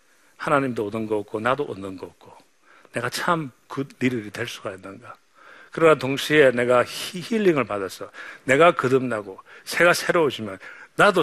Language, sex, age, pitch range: Korean, male, 50-69, 125-170 Hz